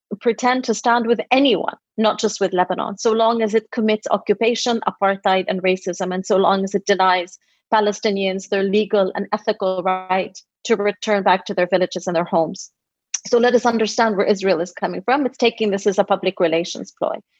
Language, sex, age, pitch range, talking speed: English, female, 30-49, 205-290 Hz, 195 wpm